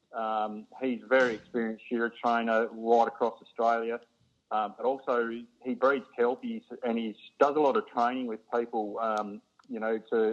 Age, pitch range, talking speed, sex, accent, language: 40-59, 115-130 Hz, 170 wpm, male, Australian, English